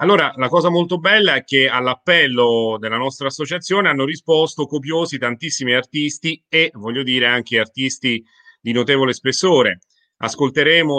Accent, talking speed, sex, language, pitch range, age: native, 135 wpm, male, Italian, 120-155 Hz, 40-59